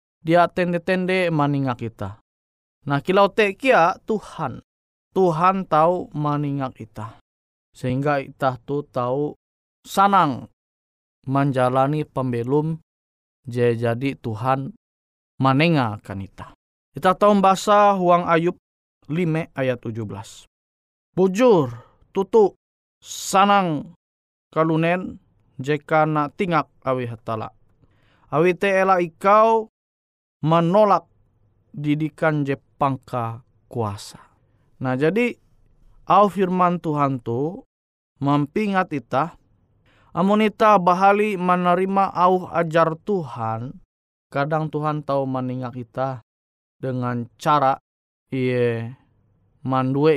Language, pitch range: Indonesian, 115-175 Hz